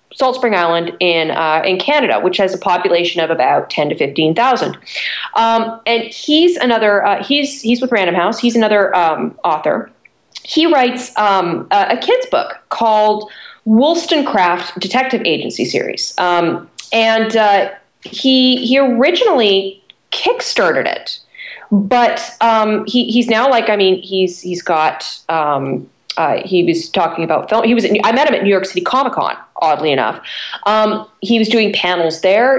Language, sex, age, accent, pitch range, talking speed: English, female, 30-49, American, 190-255 Hz, 160 wpm